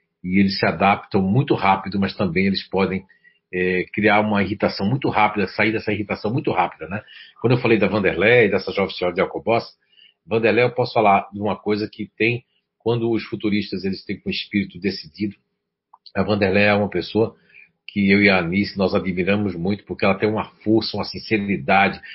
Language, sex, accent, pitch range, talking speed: Portuguese, male, Brazilian, 95-115 Hz, 190 wpm